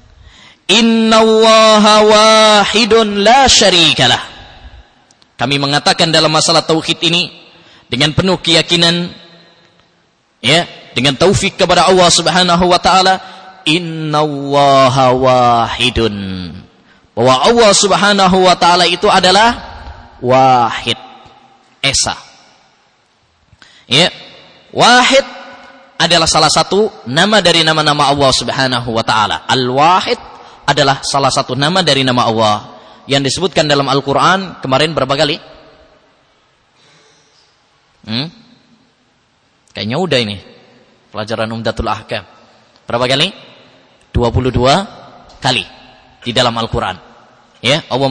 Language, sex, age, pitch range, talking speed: English, male, 20-39, 130-195 Hz, 95 wpm